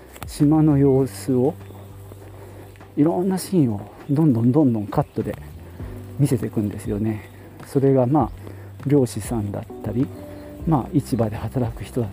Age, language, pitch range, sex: 40-59, Japanese, 100-145 Hz, male